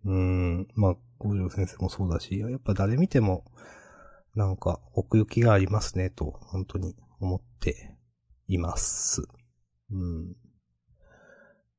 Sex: male